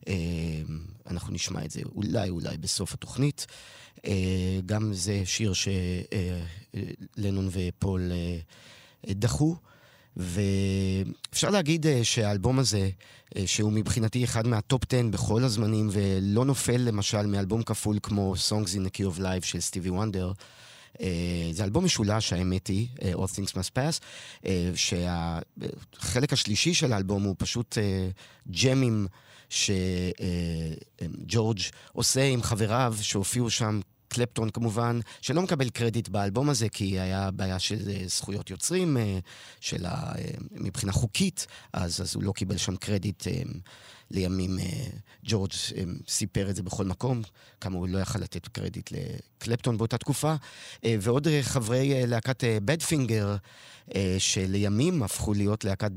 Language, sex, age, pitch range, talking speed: Hebrew, male, 30-49, 95-120 Hz, 130 wpm